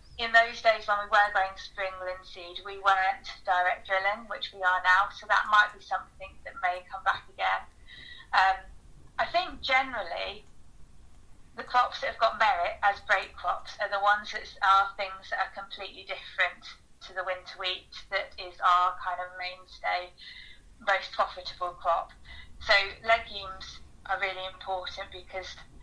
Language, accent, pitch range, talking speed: English, British, 180-205 Hz, 160 wpm